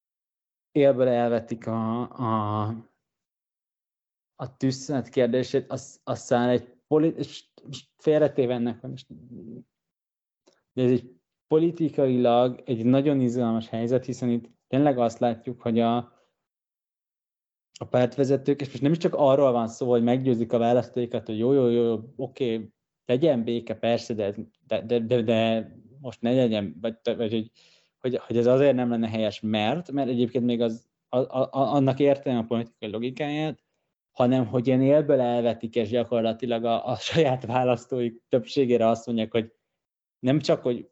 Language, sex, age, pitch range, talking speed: Hungarian, male, 20-39, 115-130 Hz, 150 wpm